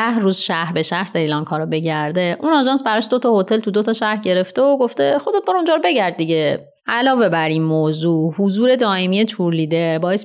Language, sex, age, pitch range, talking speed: Persian, female, 30-49, 160-220 Hz, 195 wpm